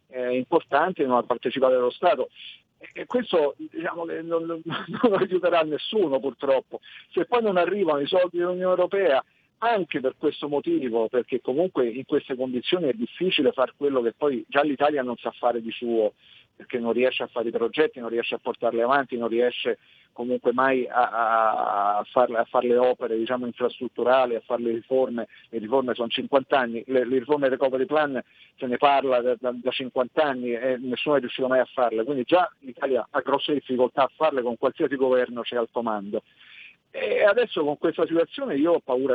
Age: 50-69